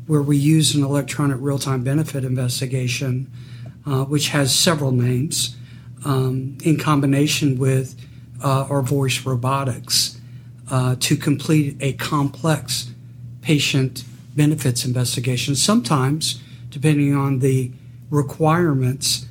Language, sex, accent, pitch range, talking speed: English, male, American, 125-150 Hz, 105 wpm